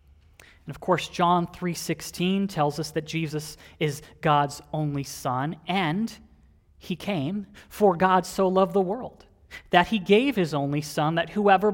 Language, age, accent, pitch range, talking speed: English, 30-49, American, 135-190 Hz, 155 wpm